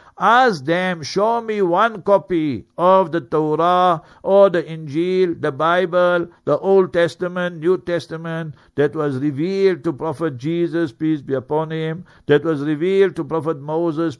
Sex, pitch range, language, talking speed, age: male, 160-190 Hz, English, 150 wpm, 60-79